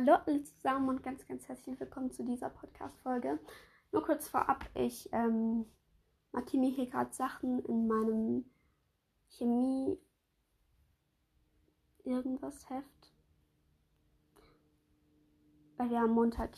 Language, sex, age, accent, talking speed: German, female, 20-39, German, 100 wpm